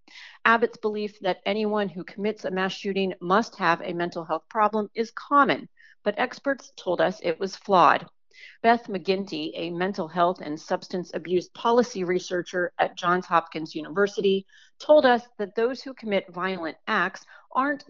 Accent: American